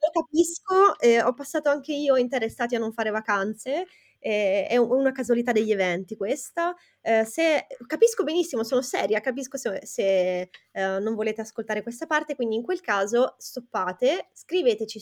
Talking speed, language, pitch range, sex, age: 150 wpm, Italian, 200-270 Hz, female, 20-39